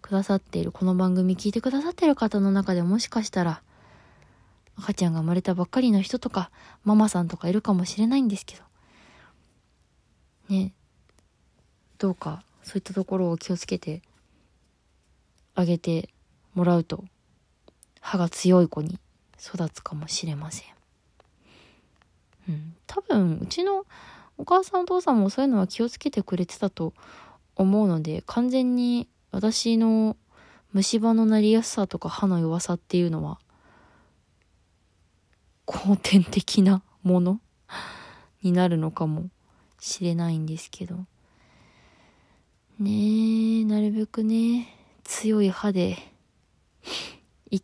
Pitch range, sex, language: 175-220 Hz, female, Japanese